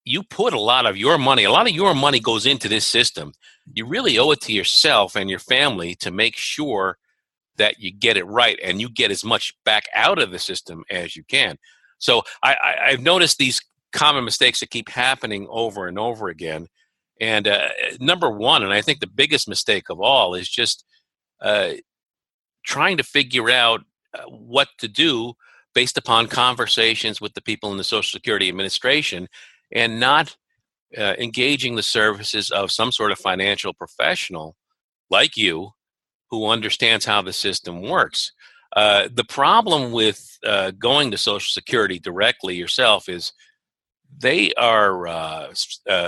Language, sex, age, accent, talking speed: English, male, 50-69, American, 170 wpm